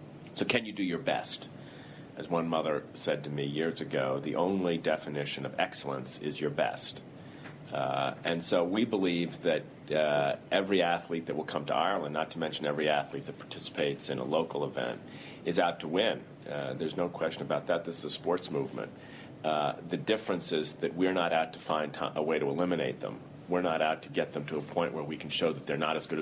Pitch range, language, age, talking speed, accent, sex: 75-95 Hz, English, 40-59, 215 wpm, American, male